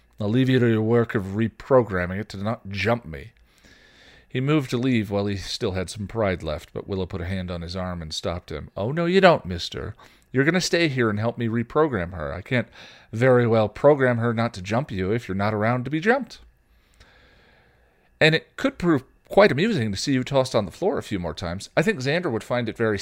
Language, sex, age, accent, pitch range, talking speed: English, male, 40-59, American, 90-115 Hz, 235 wpm